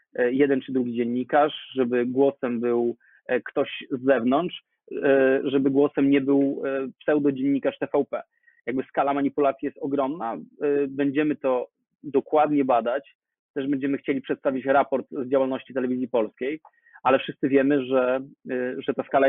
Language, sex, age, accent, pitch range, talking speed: Polish, male, 20-39, native, 130-145 Hz, 130 wpm